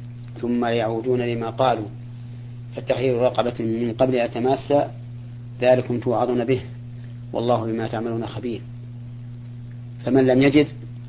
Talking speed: 105 wpm